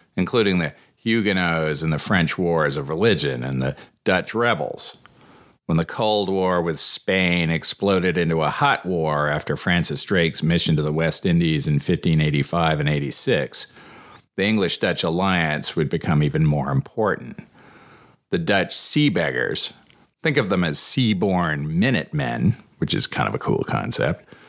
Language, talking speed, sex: English, 150 wpm, male